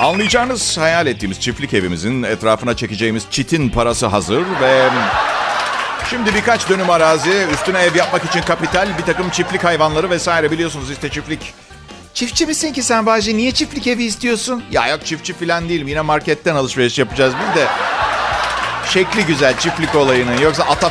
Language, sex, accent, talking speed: Turkish, male, native, 155 wpm